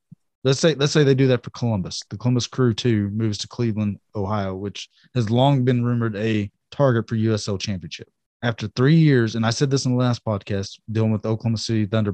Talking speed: 215 wpm